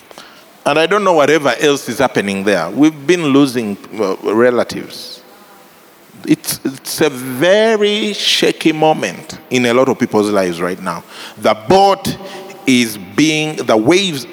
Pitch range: 125-185 Hz